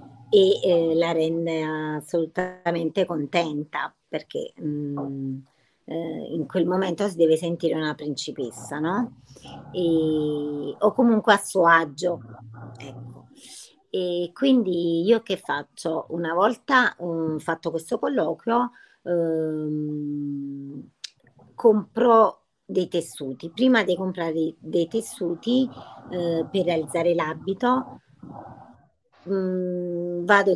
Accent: native